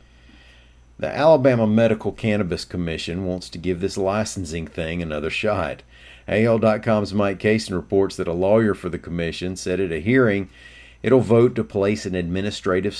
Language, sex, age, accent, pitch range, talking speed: English, male, 50-69, American, 70-95 Hz, 150 wpm